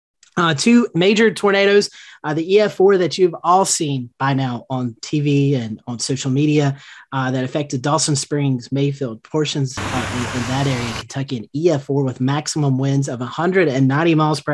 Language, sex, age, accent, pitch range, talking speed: English, male, 30-49, American, 125-155 Hz, 170 wpm